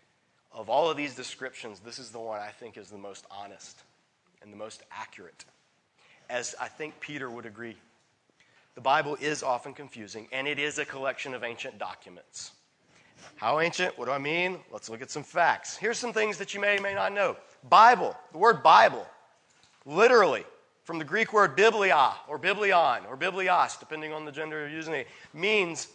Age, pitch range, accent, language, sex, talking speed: 40-59, 130-180 Hz, American, English, male, 185 wpm